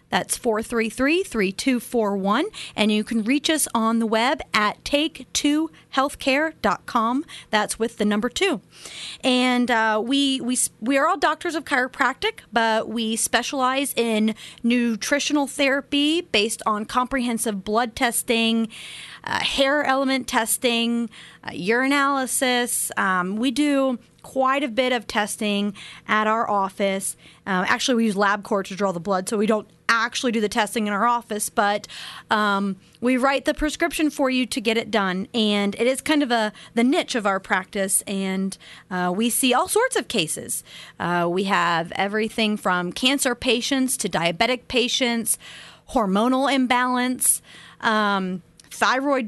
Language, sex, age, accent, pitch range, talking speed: English, female, 30-49, American, 210-265 Hz, 145 wpm